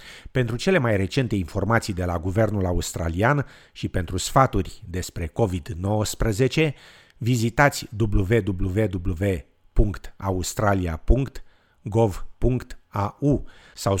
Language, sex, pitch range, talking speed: Romanian, male, 95-115 Hz, 75 wpm